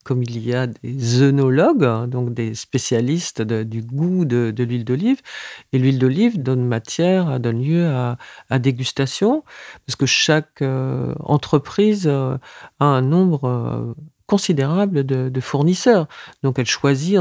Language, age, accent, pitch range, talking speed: French, 50-69, French, 125-160 Hz, 150 wpm